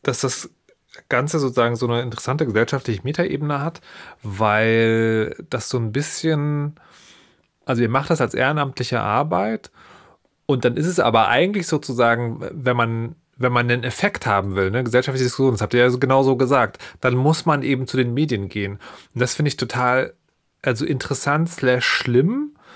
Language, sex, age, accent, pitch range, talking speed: German, male, 30-49, German, 115-145 Hz, 170 wpm